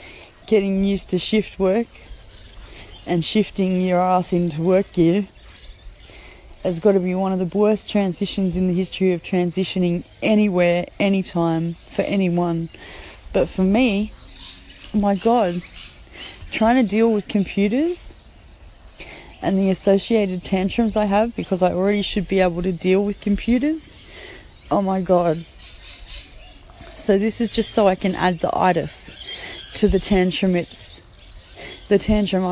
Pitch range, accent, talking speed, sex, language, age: 170-200 Hz, Australian, 140 wpm, female, English, 20-39